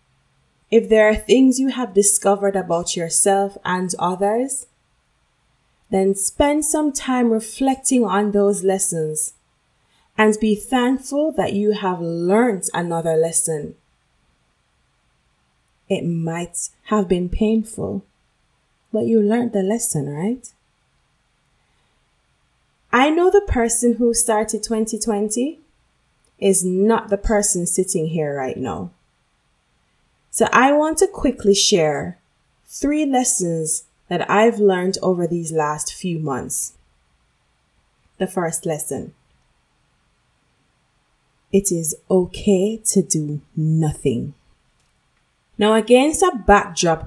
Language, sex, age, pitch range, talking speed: English, female, 20-39, 170-225 Hz, 105 wpm